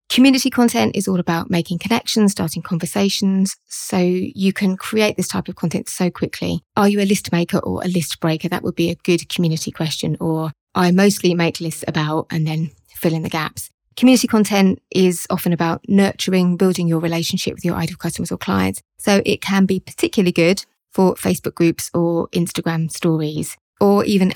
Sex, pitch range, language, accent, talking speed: female, 165-195 Hz, English, British, 185 wpm